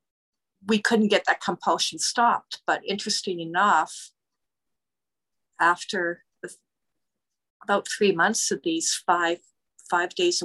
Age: 50-69